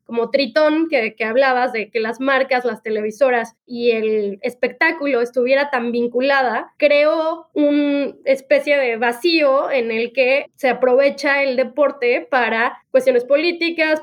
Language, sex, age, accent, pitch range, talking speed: Spanish, female, 20-39, Mexican, 255-330 Hz, 135 wpm